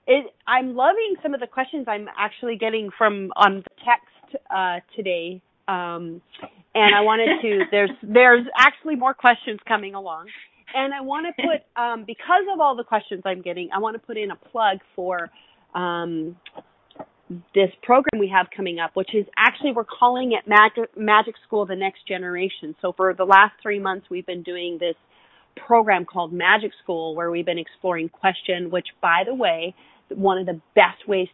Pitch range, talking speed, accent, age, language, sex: 180-230 Hz, 190 wpm, American, 30-49, English, female